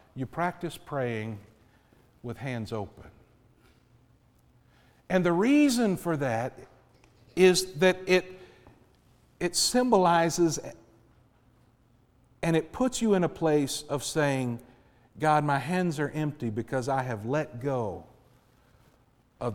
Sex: male